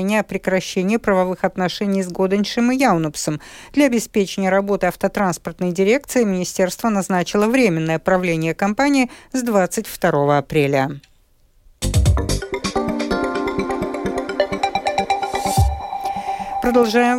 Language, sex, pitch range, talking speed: Russian, female, 185-240 Hz, 75 wpm